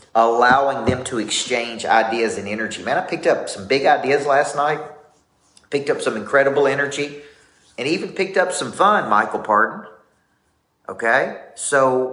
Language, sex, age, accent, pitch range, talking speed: English, male, 40-59, American, 120-150 Hz, 155 wpm